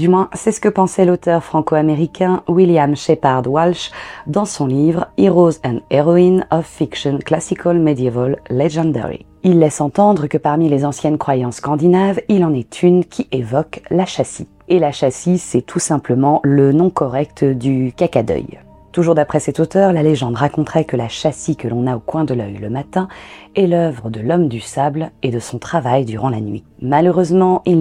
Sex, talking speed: female, 185 wpm